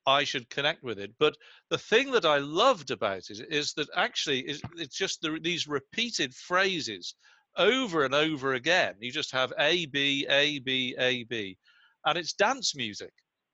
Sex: male